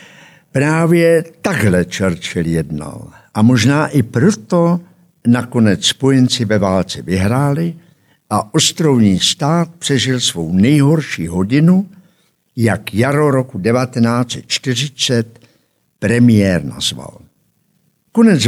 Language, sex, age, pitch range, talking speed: Czech, male, 60-79, 110-165 Hz, 90 wpm